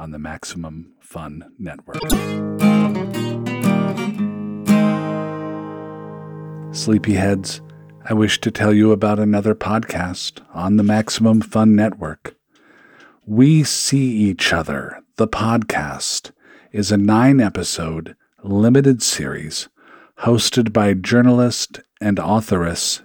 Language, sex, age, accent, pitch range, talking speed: English, male, 50-69, American, 95-125 Hz, 90 wpm